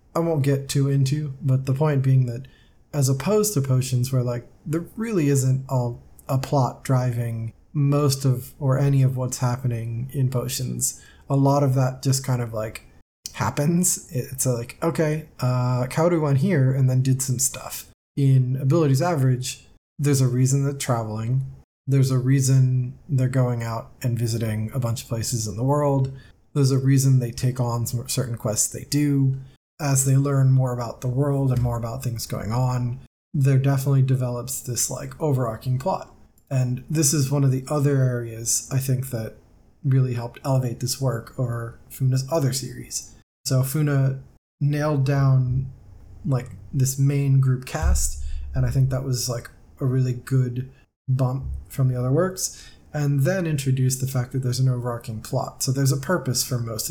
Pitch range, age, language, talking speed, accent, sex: 120-135 Hz, 20-39, English, 175 wpm, American, male